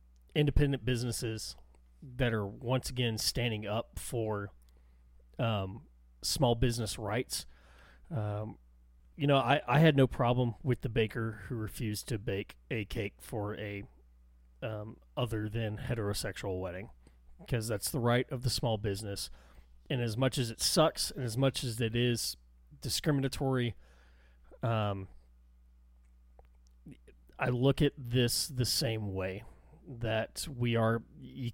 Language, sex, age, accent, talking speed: English, male, 30-49, American, 135 wpm